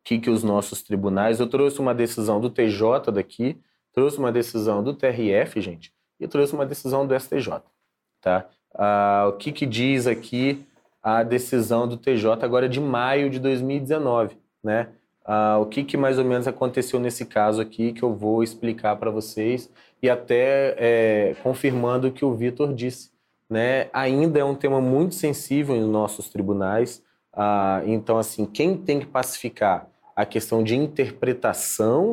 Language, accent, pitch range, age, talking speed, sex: Portuguese, Brazilian, 105-130 Hz, 30-49, 170 wpm, male